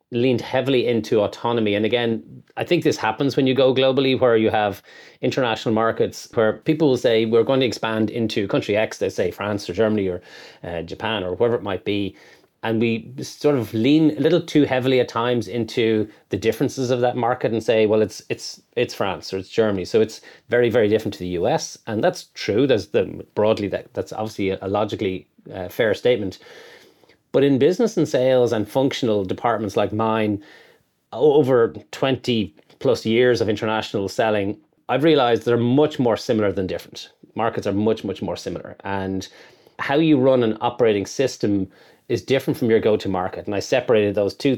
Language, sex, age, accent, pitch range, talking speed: English, male, 30-49, Irish, 105-130 Hz, 190 wpm